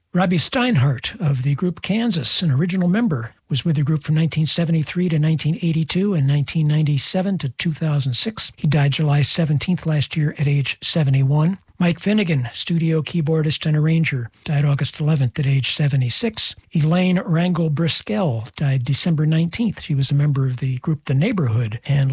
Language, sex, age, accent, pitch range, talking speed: English, male, 60-79, American, 140-175 Hz, 155 wpm